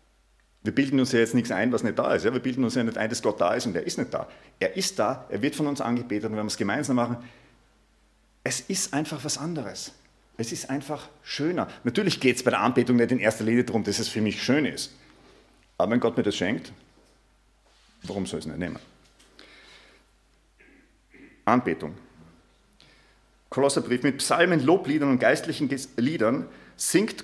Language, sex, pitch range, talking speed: German, male, 115-140 Hz, 190 wpm